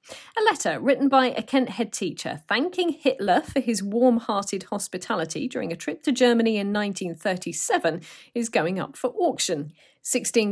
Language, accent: English, British